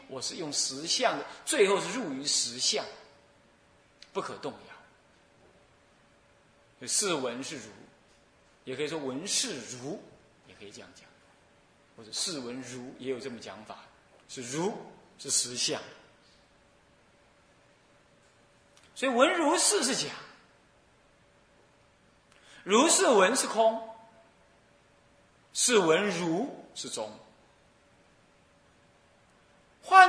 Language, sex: Chinese, male